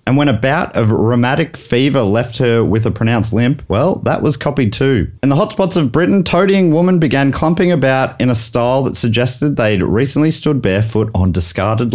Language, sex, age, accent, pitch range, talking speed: English, male, 30-49, Australian, 110-145 Hz, 195 wpm